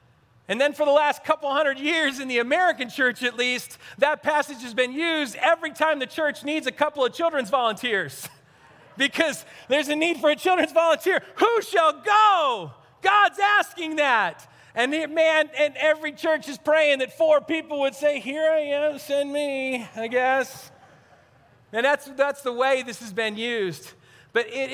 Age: 40-59